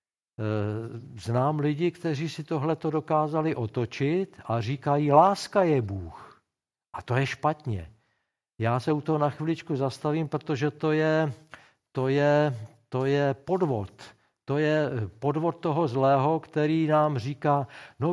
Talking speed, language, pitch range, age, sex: 130 wpm, Czech, 130-165 Hz, 50-69, male